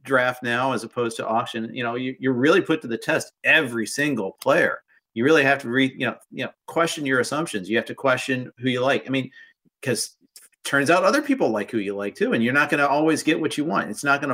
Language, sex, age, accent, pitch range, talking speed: English, male, 40-59, American, 120-170 Hz, 260 wpm